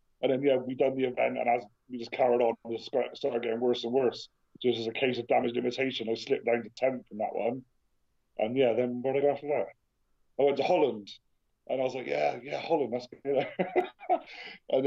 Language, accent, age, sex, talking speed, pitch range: English, British, 30-49, male, 230 wpm, 125-150 Hz